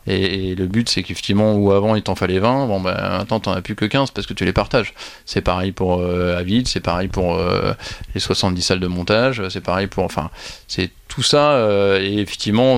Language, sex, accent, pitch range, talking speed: French, male, French, 95-105 Hz, 225 wpm